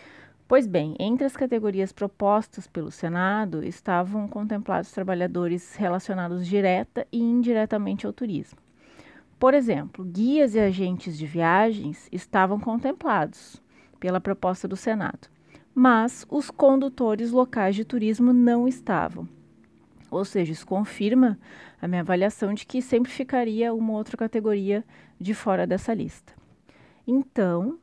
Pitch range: 185-230 Hz